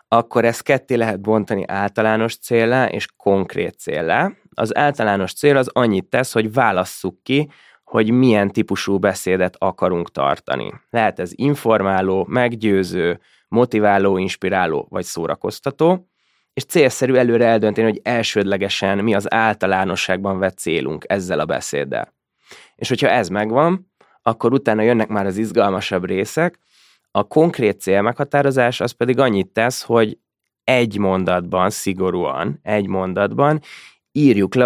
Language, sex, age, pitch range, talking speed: Hungarian, male, 20-39, 95-125 Hz, 130 wpm